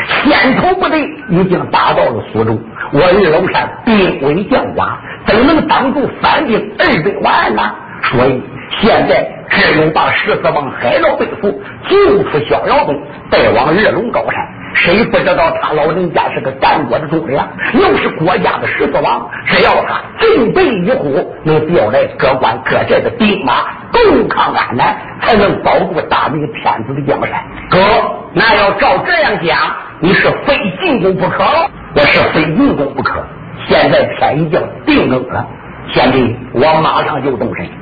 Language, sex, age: Chinese, male, 50-69